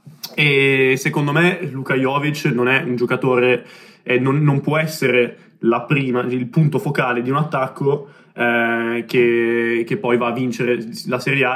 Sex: male